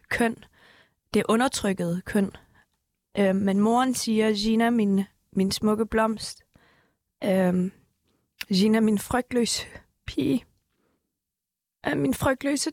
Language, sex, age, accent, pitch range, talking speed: Danish, female, 20-39, native, 210-255 Hz, 95 wpm